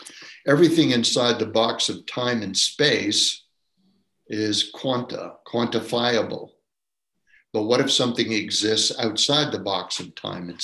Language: English